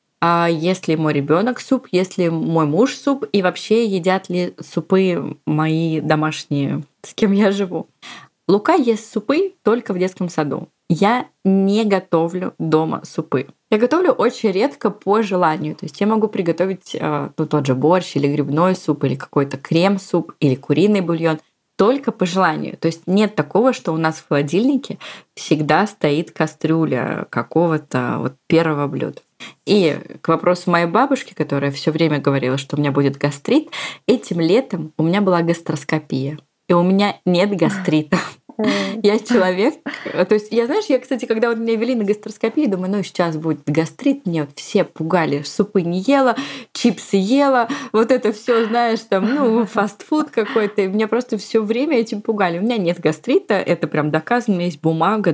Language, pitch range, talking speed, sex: Russian, 160-225 Hz, 165 wpm, female